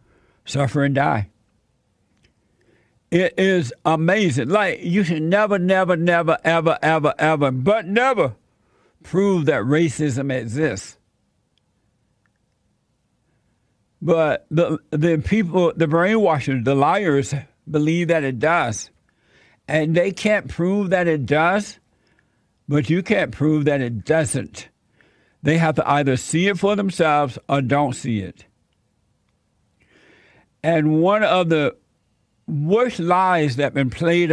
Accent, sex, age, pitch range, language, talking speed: American, male, 60-79, 125-170 Hz, English, 120 wpm